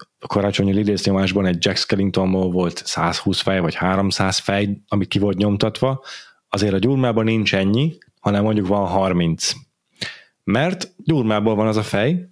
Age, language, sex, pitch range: 30-49, Hungarian, male, 95-125 Hz